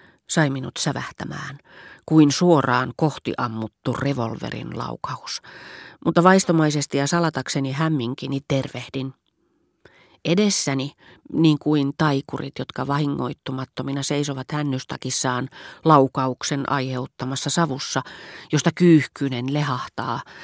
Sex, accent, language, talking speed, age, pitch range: female, native, Finnish, 85 wpm, 40-59, 130-160 Hz